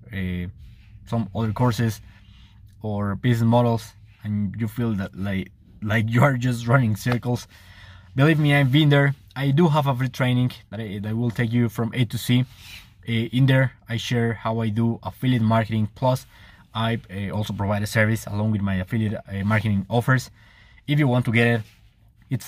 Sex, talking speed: male, 185 wpm